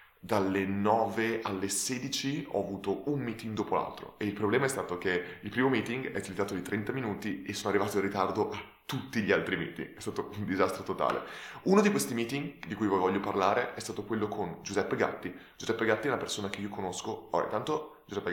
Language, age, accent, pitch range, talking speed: Italian, 20-39, native, 95-110 Hz, 210 wpm